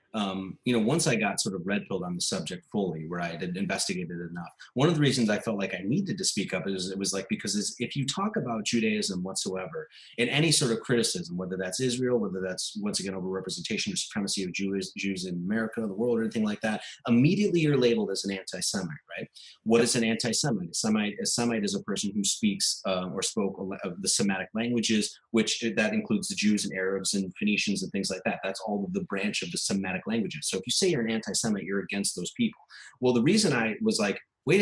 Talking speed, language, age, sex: 240 wpm, English, 30-49, male